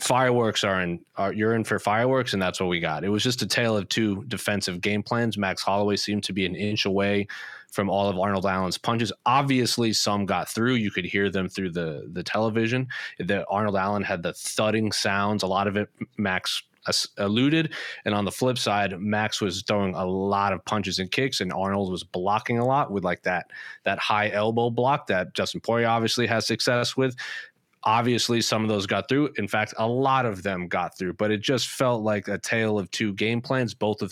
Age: 30-49